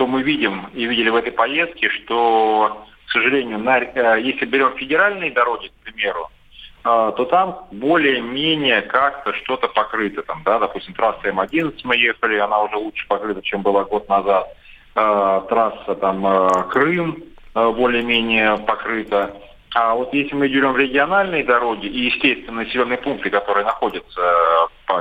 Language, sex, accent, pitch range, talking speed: Russian, male, native, 100-125 Hz, 150 wpm